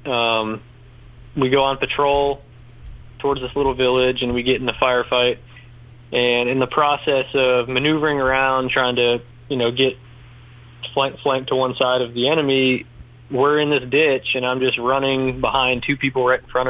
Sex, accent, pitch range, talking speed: male, American, 120-135 Hz, 175 wpm